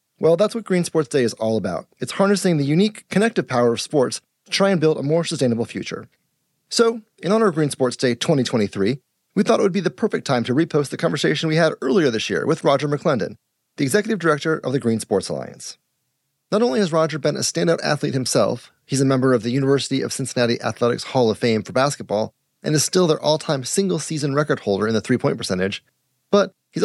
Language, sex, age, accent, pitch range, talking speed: English, male, 30-49, American, 125-175 Hz, 220 wpm